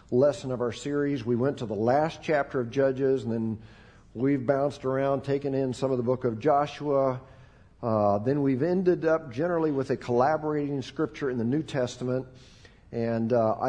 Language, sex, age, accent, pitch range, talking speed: English, male, 50-69, American, 120-155 Hz, 180 wpm